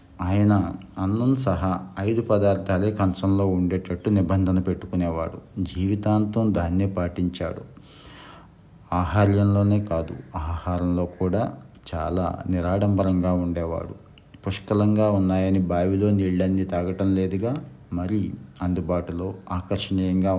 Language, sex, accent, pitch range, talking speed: Telugu, male, native, 90-100 Hz, 80 wpm